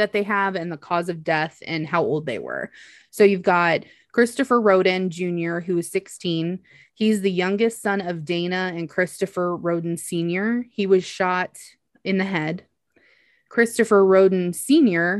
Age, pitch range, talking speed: 20-39, 175-205 Hz, 160 wpm